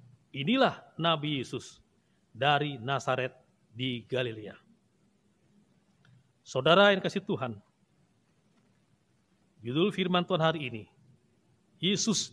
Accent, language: native, Indonesian